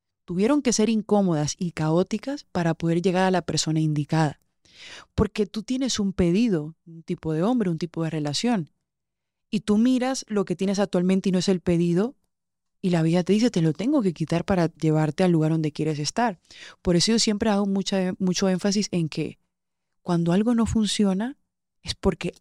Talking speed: 190 wpm